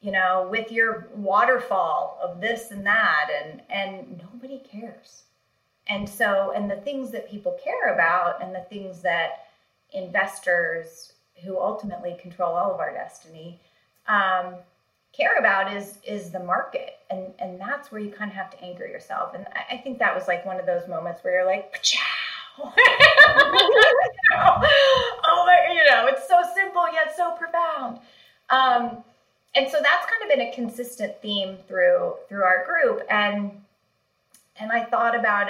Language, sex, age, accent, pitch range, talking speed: English, female, 30-49, American, 180-245 Hz, 160 wpm